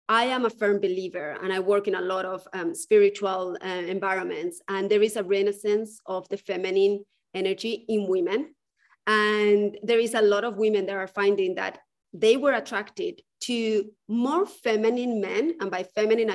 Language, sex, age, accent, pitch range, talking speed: English, female, 30-49, Spanish, 195-240 Hz, 175 wpm